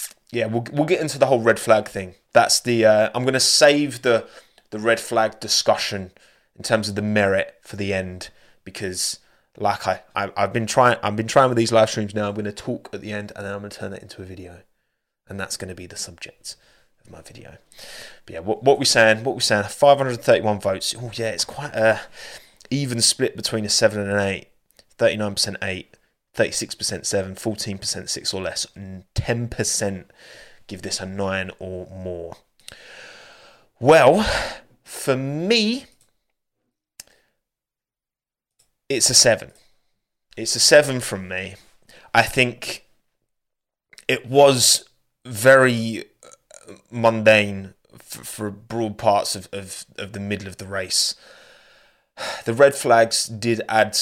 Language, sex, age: English, male, 20-39